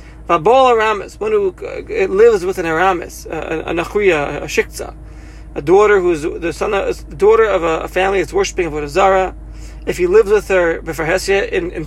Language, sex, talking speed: English, male, 160 wpm